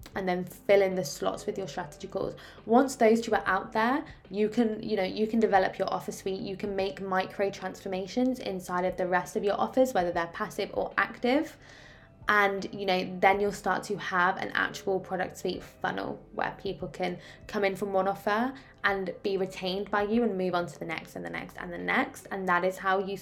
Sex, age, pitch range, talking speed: female, 10-29, 185-220 Hz, 220 wpm